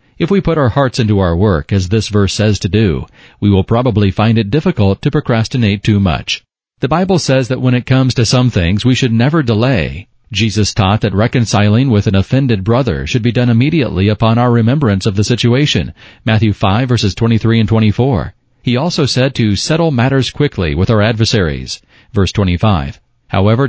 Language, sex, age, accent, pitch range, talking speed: English, male, 40-59, American, 105-125 Hz, 190 wpm